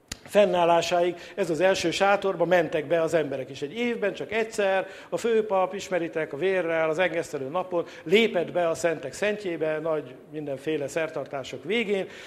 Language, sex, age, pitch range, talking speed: English, male, 60-79, 155-185 Hz, 150 wpm